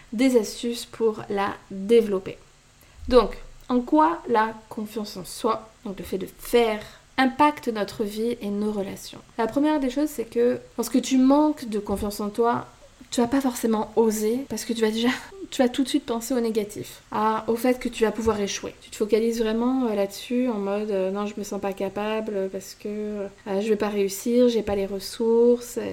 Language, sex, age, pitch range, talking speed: French, female, 20-39, 200-235 Hz, 195 wpm